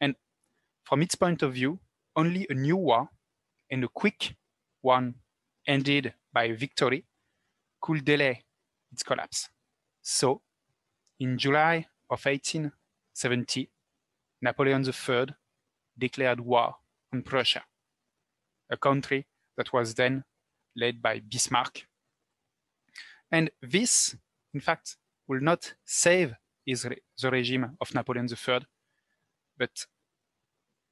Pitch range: 125-155 Hz